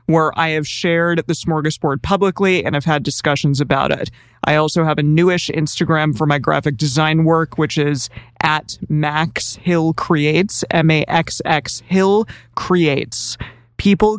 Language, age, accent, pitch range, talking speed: English, 20-39, American, 150-170 Hz, 155 wpm